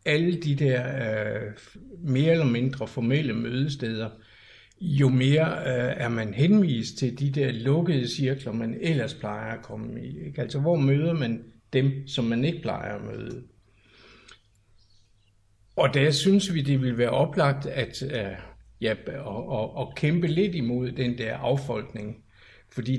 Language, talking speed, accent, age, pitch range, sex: Danish, 150 wpm, native, 60-79, 110-140 Hz, male